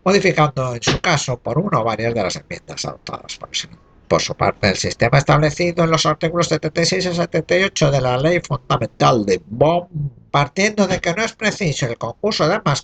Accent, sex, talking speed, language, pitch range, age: Spanish, male, 190 wpm, Spanish, 135-175 Hz, 60-79